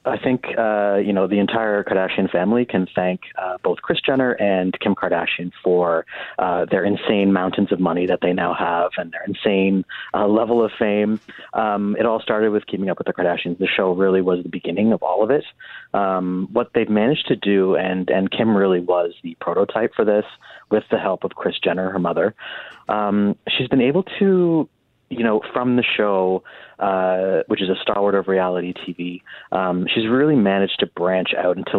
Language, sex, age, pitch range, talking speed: English, male, 30-49, 95-115 Hz, 200 wpm